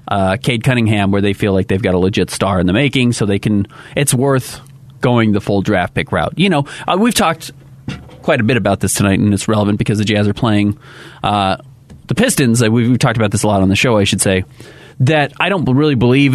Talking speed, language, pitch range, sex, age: 240 wpm, English, 105-135 Hz, male, 30-49